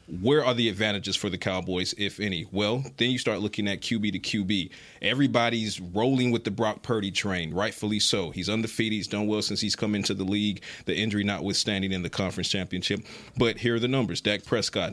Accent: American